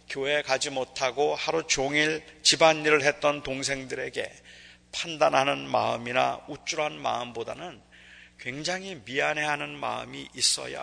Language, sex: Korean, male